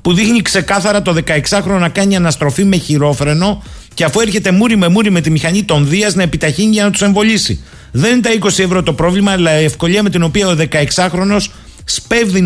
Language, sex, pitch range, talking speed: Greek, male, 145-195 Hz, 205 wpm